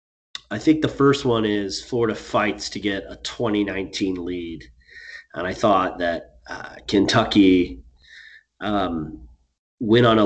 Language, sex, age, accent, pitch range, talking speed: English, male, 30-49, American, 85-110 Hz, 135 wpm